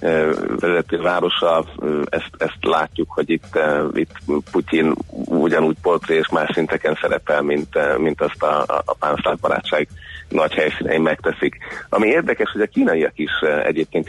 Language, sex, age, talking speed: Hungarian, male, 30-49, 130 wpm